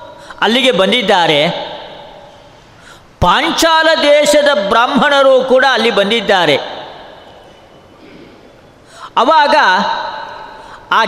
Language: Kannada